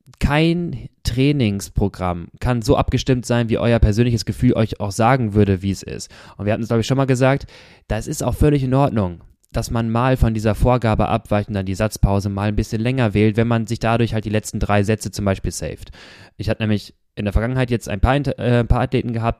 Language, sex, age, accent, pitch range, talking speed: German, male, 20-39, German, 105-130 Hz, 230 wpm